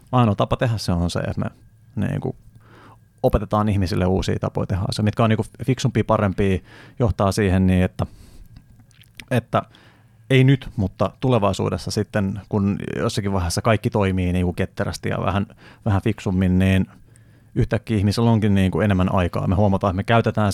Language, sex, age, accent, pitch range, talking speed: Finnish, male, 30-49, native, 100-115 Hz, 165 wpm